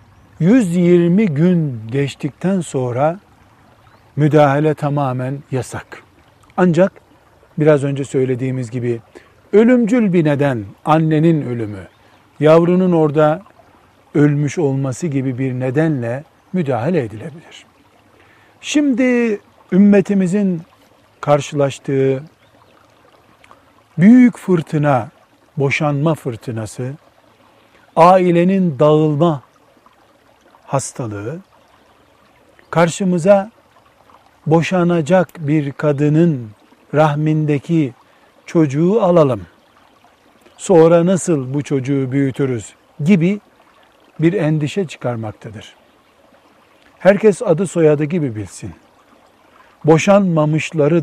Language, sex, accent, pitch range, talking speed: Turkish, male, native, 130-170 Hz, 70 wpm